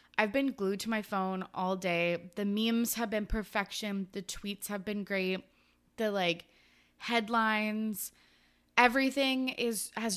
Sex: female